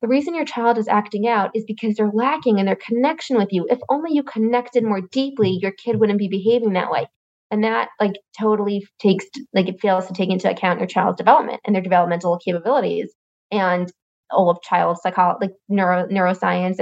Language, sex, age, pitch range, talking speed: English, female, 20-39, 185-220 Hz, 195 wpm